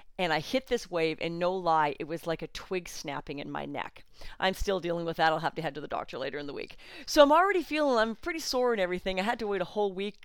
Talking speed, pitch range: 285 wpm, 165-225 Hz